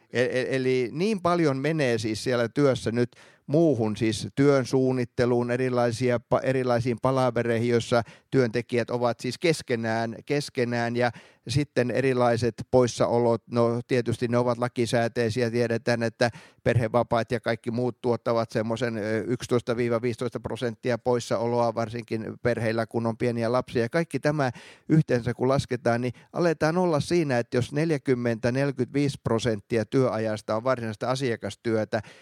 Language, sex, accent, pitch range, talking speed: Finnish, male, native, 115-140 Hz, 115 wpm